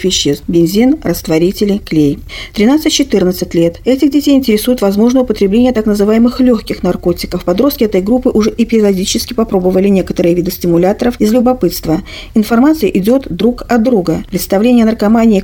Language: Russian